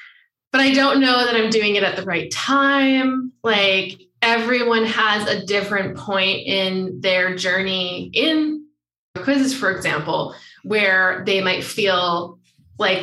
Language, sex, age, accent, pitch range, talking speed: English, female, 20-39, American, 190-245 Hz, 140 wpm